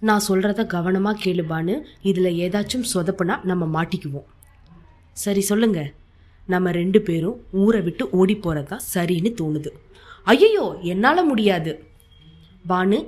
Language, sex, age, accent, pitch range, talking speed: Tamil, female, 20-39, native, 160-205 Hz, 115 wpm